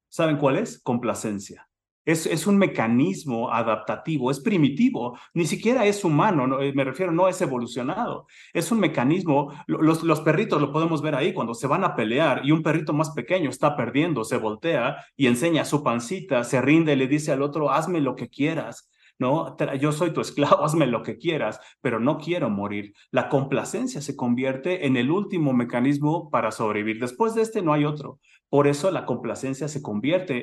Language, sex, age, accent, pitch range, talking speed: Spanish, male, 30-49, Mexican, 120-160 Hz, 185 wpm